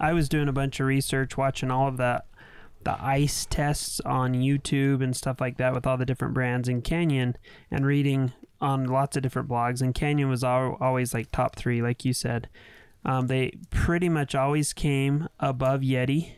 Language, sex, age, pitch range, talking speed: English, male, 20-39, 125-140 Hz, 195 wpm